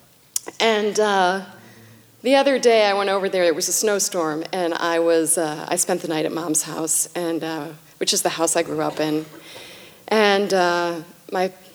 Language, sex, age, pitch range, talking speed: English, female, 40-59, 165-215 Hz, 190 wpm